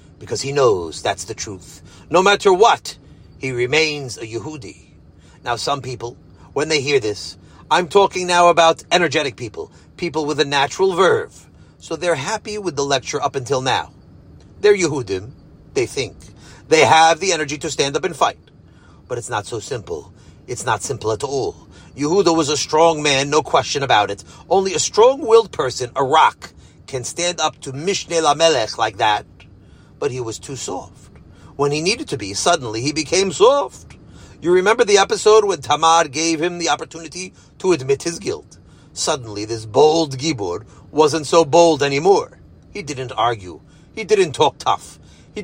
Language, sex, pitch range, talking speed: English, male, 145-205 Hz, 170 wpm